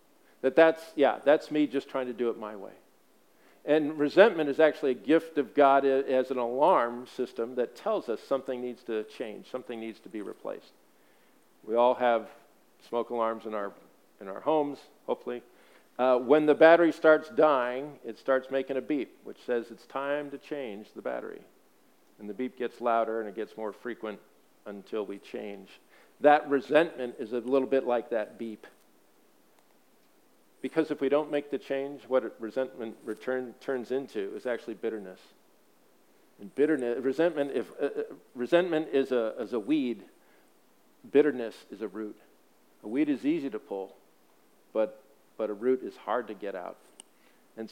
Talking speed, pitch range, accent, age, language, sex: 170 wpm, 115-145 Hz, American, 50-69, English, male